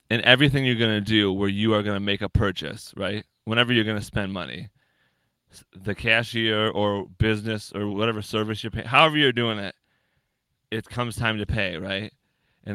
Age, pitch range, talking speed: 20-39, 105-125 Hz, 195 wpm